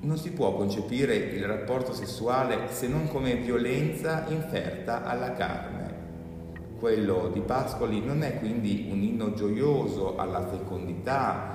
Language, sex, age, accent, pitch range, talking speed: Italian, male, 40-59, native, 90-125 Hz, 130 wpm